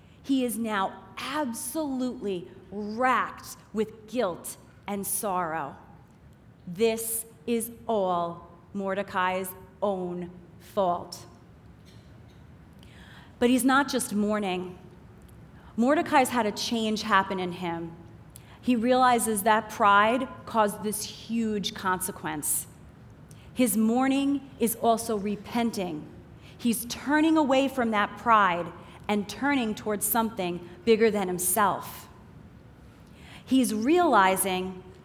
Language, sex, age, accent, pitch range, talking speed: English, female, 30-49, American, 185-235 Hz, 95 wpm